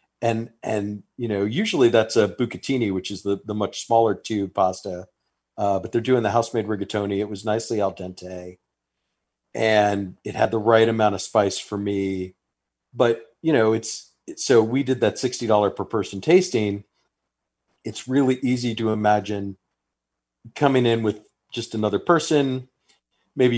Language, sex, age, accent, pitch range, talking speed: English, male, 40-59, American, 100-120 Hz, 160 wpm